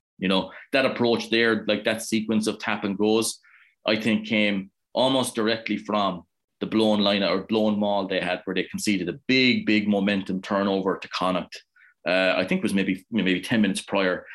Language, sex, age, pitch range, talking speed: English, male, 20-39, 100-110 Hz, 190 wpm